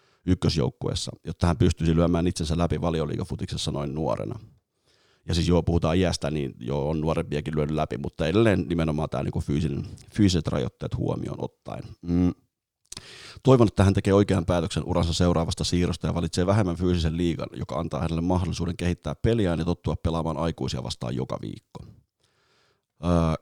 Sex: male